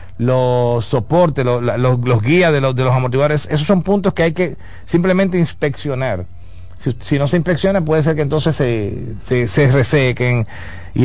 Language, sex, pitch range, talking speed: Spanish, male, 110-145 Hz, 180 wpm